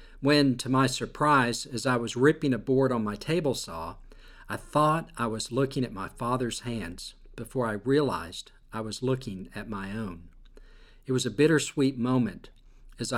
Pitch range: 110-135 Hz